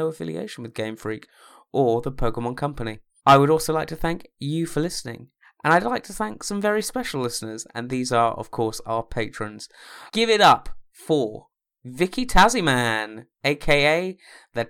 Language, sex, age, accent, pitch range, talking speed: English, male, 20-39, British, 120-175 Hz, 165 wpm